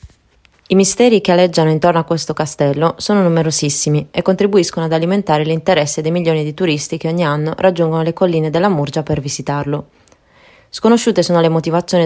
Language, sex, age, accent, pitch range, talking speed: Italian, female, 20-39, native, 155-180 Hz, 165 wpm